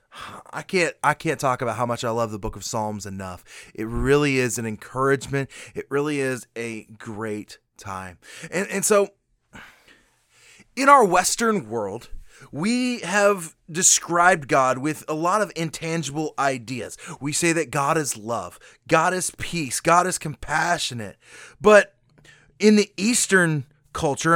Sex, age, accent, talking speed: male, 20-39, American, 150 wpm